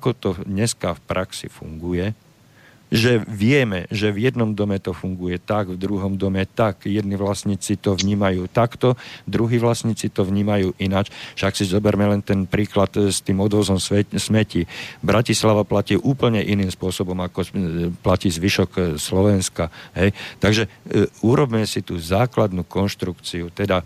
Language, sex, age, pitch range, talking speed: Slovak, male, 50-69, 90-105 Hz, 140 wpm